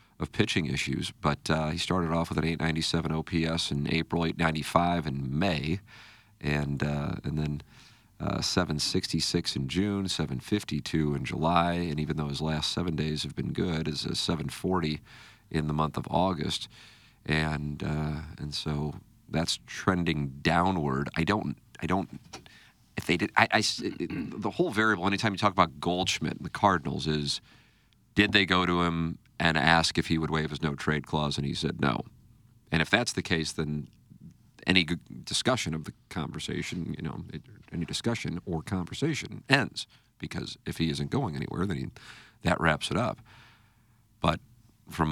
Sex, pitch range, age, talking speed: male, 75-100 Hz, 40-59, 170 wpm